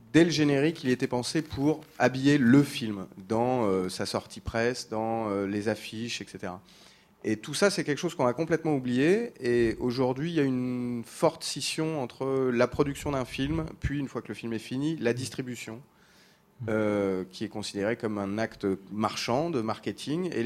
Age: 30-49